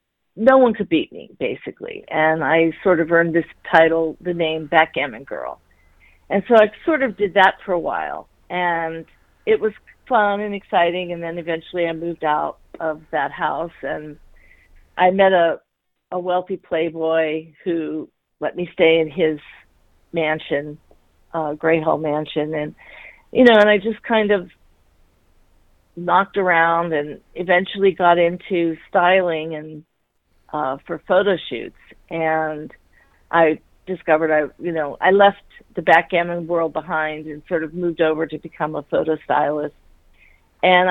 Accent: American